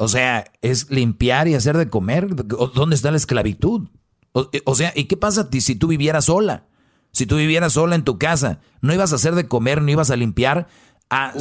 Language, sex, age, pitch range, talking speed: Spanish, male, 40-59, 120-165 Hz, 210 wpm